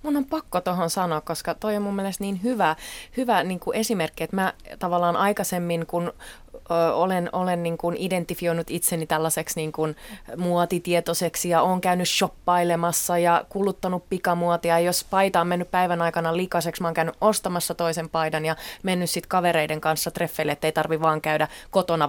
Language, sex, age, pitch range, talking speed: Finnish, female, 30-49, 170-195 Hz, 165 wpm